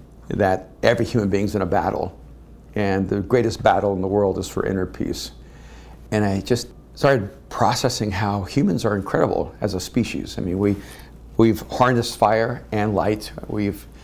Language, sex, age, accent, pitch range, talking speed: English, male, 50-69, American, 100-115 Hz, 170 wpm